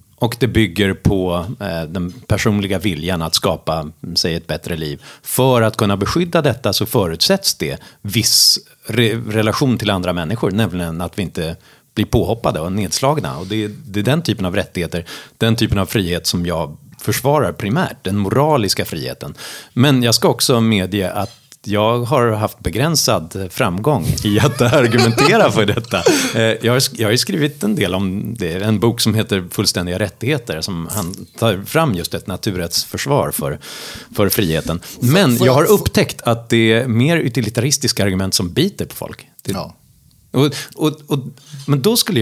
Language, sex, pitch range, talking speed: English, male, 95-125 Hz, 160 wpm